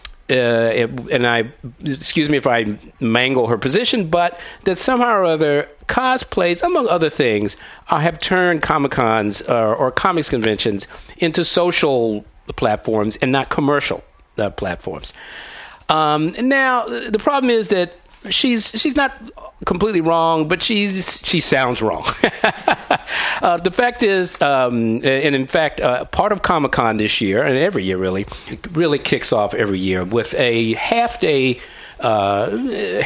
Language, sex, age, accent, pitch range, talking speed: English, male, 50-69, American, 110-175 Hz, 145 wpm